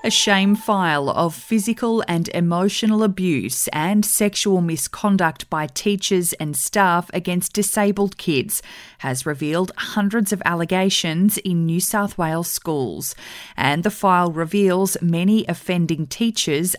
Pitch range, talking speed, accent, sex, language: 170-205 Hz, 125 wpm, Australian, female, English